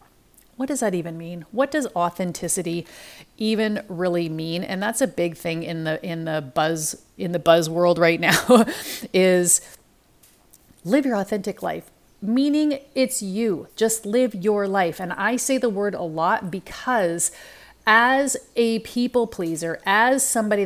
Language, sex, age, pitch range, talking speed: English, female, 30-49, 180-230 Hz, 155 wpm